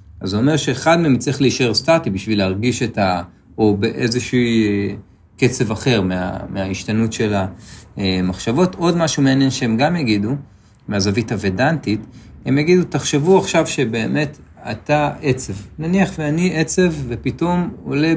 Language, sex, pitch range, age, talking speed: Hebrew, male, 100-135 Hz, 40-59, 130 wpm